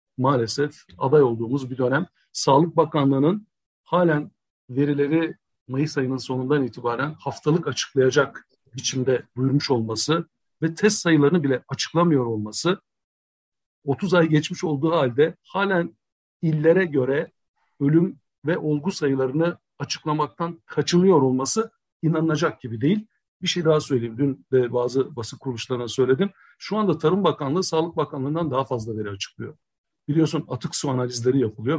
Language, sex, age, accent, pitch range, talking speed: Turkish, male, 60-79, native, 130-160 Hz, 125 wpm